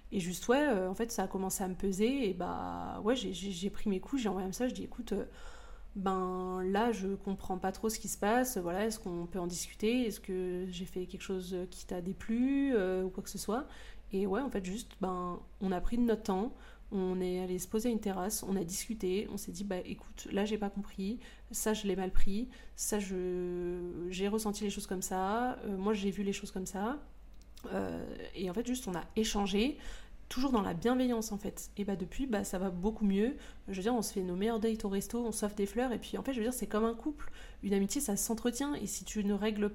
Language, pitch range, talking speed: French, 190-230 Hz, 250 wpm